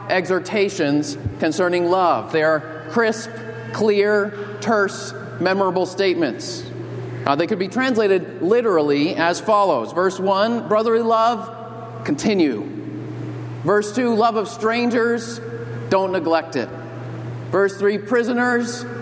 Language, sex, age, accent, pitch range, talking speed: English, male, 40-59, American, 130-220 Hz, 105 wpm